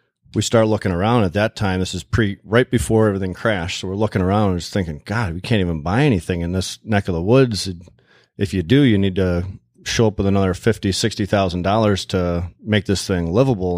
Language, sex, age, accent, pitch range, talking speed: English, male, 30-49, American, 95-110 Hz, 230 wpm